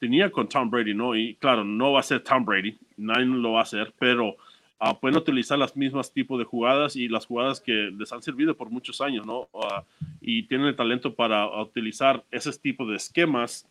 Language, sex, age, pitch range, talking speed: Spanish, male, 30-49, 110-135 Hz, 215 wpm